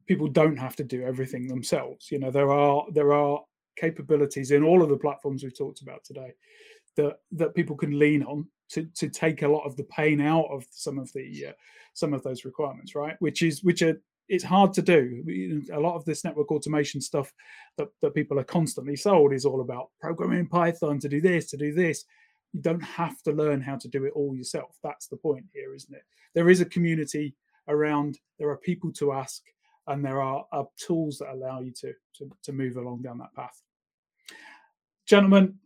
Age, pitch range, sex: 30-49, 145-185 Hz, male